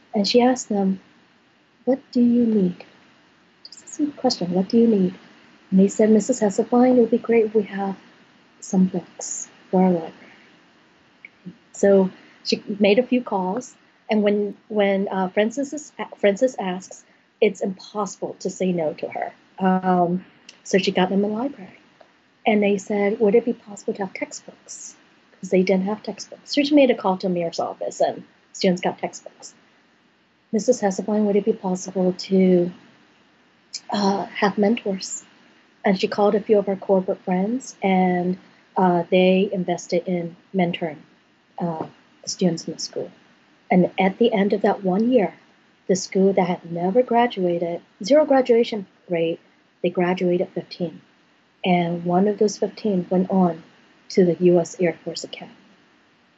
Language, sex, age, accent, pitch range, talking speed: English, female, 40-59, American, 180-225 Hz, 160 wpm